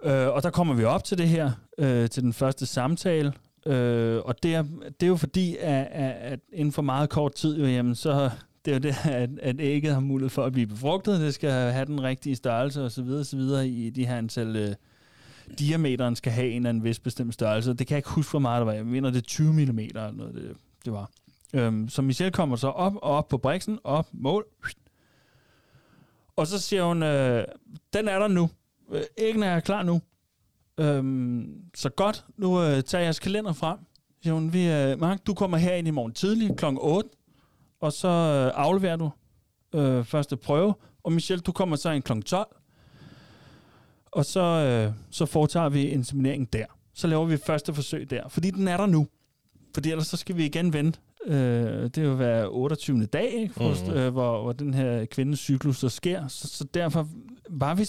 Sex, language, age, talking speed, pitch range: male, Danish, 30-49, 205 wpm, 125-165 Hz